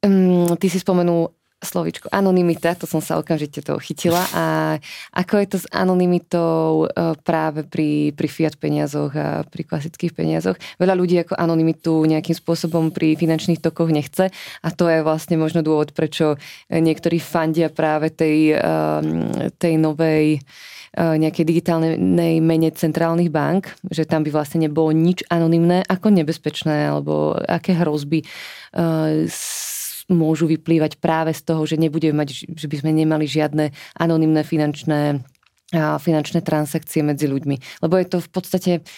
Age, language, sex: 20-39, Slovak, female